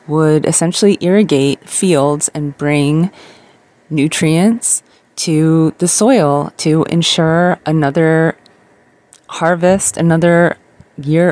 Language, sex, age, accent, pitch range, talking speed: English, female, 30-49, American, 145-175 Hz, 85 wpm